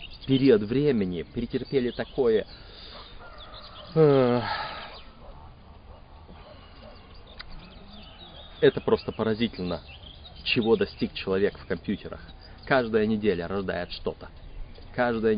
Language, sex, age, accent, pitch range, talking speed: Russian, male, 30-49, native, 90-125 Hz, 70 wpm